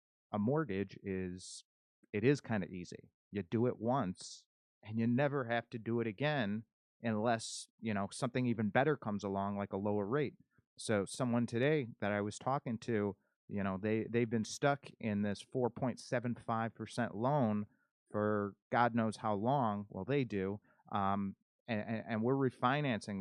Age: 30-49